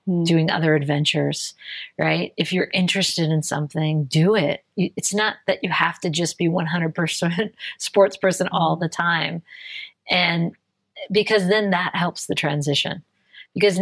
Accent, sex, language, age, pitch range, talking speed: American, female, English, 40-59, 165-195 Hz, 145 wpm